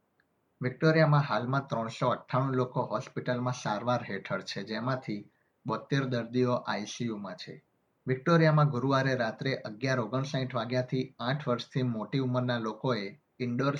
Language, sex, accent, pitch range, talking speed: Gujarati, male, native, 120-135 Hz, 115 wpm